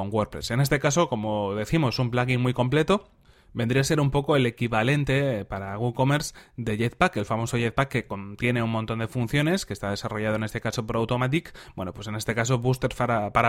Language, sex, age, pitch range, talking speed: Spanish, male, 30-49, 110-130 Hz, 200 wpm